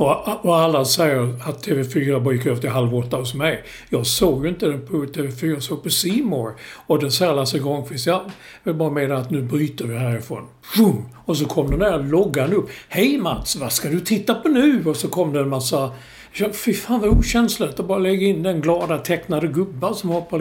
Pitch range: 140-180 Hz